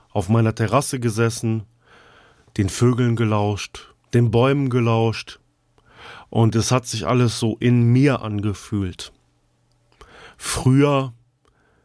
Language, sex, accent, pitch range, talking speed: German, male, German, 110-125 Hz, 100 wpm